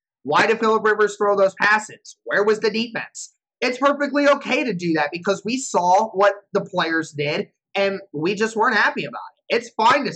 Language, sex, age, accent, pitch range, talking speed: English, male, 30-49, American, 185-235 Hz, 200 wpm